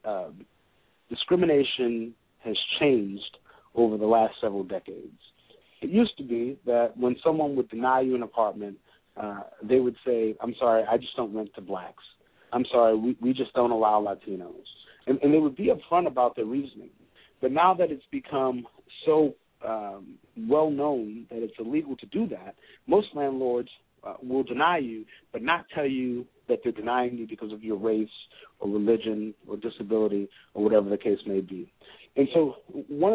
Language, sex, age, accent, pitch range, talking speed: English, male, 40-59, American, 110-150 Hz, 175 wpm